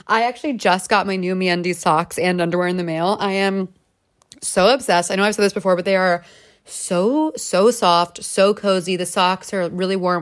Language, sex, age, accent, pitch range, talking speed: English, female, 20-39, American, 170-220 Hz, 210 wpm